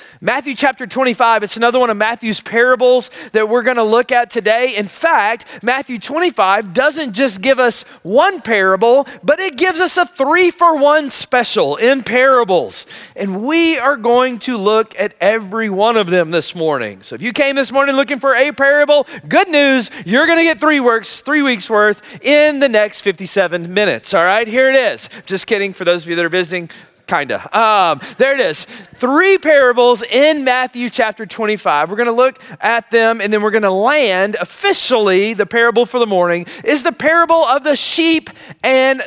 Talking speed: 190 wpm